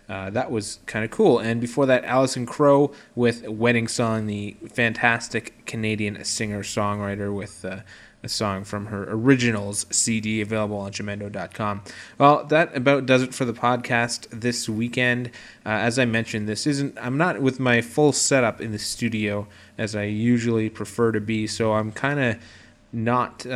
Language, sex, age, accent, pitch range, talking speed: English, male, 20-39, American, 105-125 Hz, 165 wpm